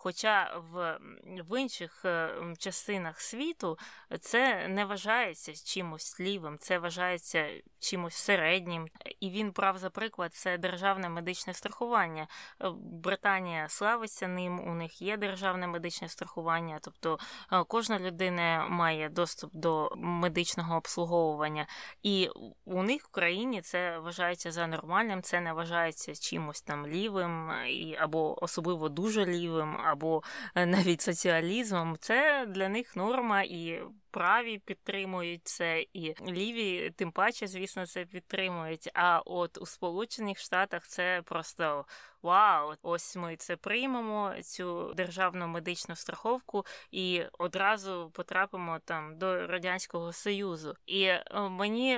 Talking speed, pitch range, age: 120 wpm, 170-200 Hz, 20-39